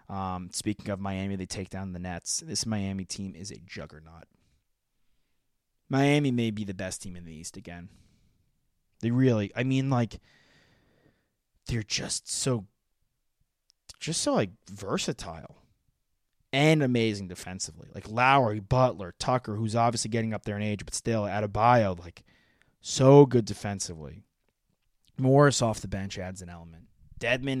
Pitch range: 95-125 Hz